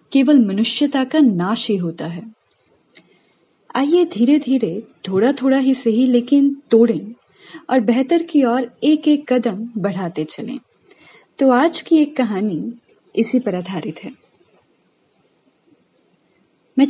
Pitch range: 225-280 Hz